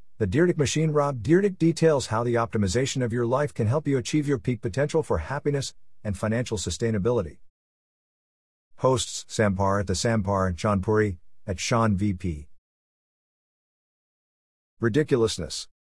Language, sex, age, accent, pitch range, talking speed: English, male, 50-69, American, 90-120 Hz, 130 wpm